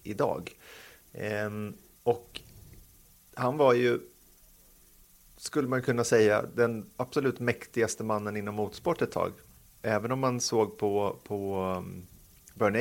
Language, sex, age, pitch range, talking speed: Swedish, male, 30-49, 100-120 Hz, 110 wpm